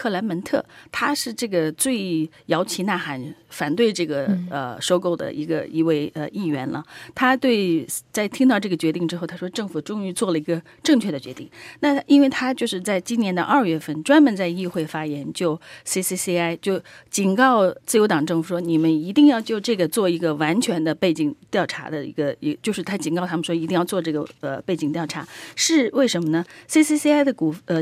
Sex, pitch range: female, 160-225 Hz